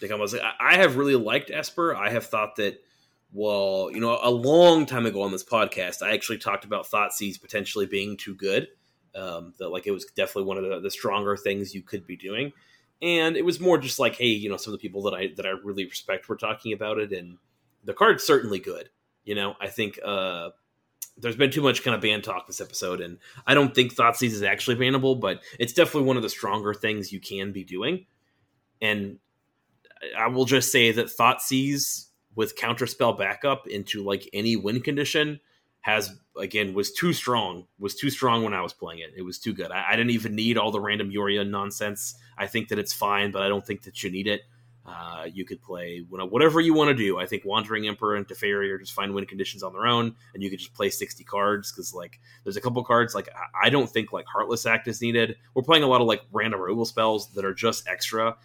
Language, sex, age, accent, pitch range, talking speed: English, male, 30-49, American, 100-125 Hz, 230 wpm